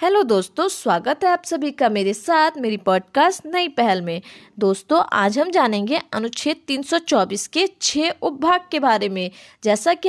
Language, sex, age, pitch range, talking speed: Hindi, female, 20-39, 220-310 Hz, 165 wpm